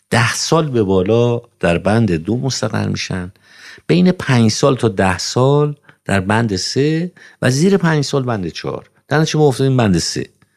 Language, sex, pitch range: Persian, male, 90-130 Hz